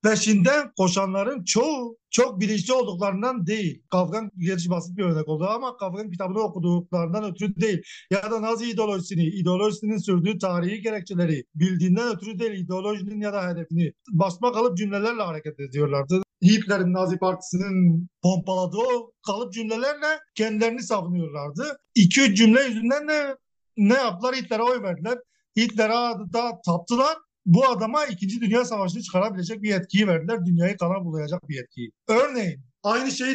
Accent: native